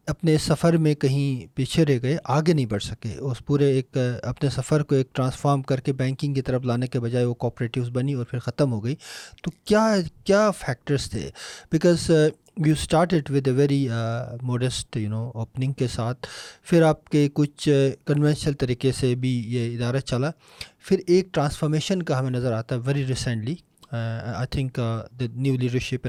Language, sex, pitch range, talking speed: Urdu, male, 125-155 Hz, 180 wpm